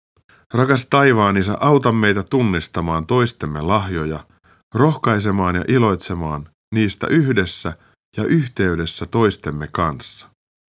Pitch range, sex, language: 80-120 Hz, male, Finnish